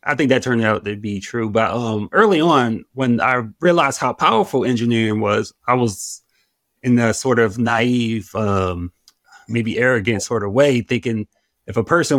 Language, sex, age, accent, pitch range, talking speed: English, male, 20-39, American, 105-130 Hz, 175 wpm